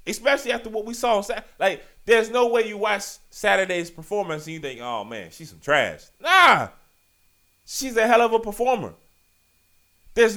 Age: 30-49